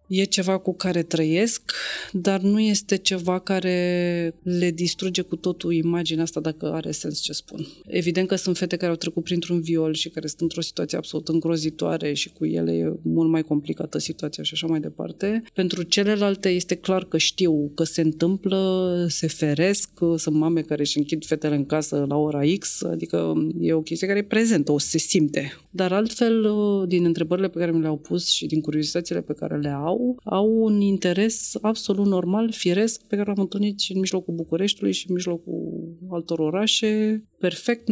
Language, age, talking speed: Romanian, 30-49, 185 wpm